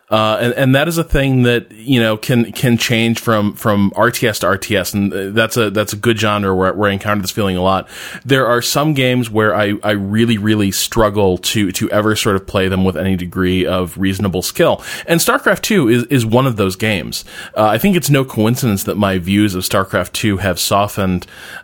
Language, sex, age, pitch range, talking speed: English, male, 20-39, 95-120 Hz, 220 wpm